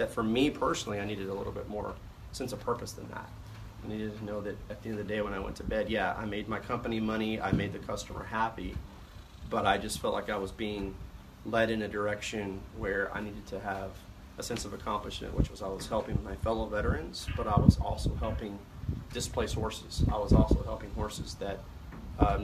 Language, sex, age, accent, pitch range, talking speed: English, male, 30-49, American, 100-110 Hz, 225 wpm